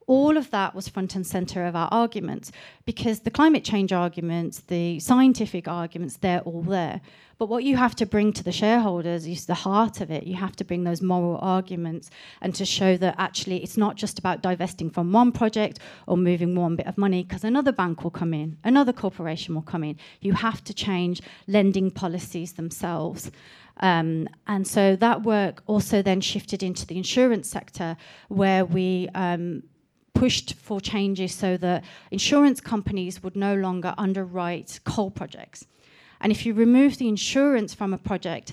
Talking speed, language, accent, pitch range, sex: 180 wpm, English, British, 180-210 Hz, female